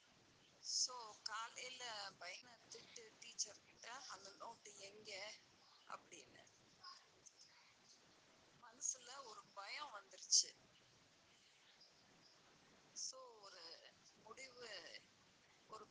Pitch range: 210-265 Hz